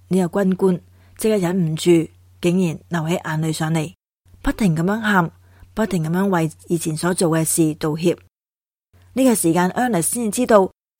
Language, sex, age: Chinese, female, 20-39